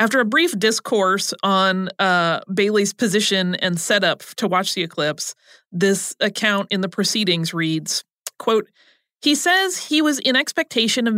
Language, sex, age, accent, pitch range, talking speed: English, female, 30-49, American, 180-230 Hz, 150 wpm